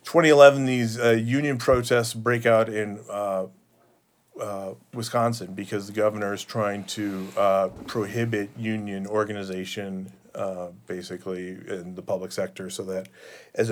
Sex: male